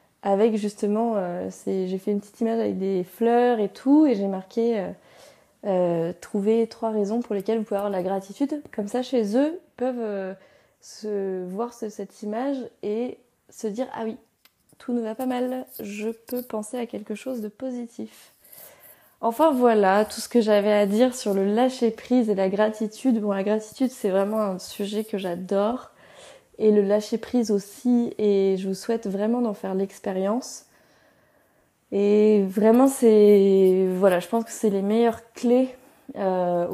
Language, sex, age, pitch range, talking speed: French, female, 20-39, 200-235 Hz, 180 wpm